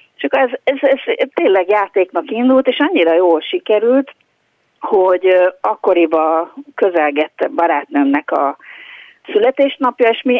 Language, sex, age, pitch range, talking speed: Hungarian, female, 50-69, 170-275 Hz, 110 wpm